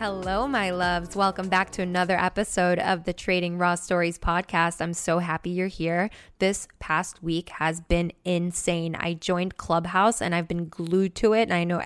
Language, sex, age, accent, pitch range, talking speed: English, female, 10-29, American, 185-215 Hz, 185 wpm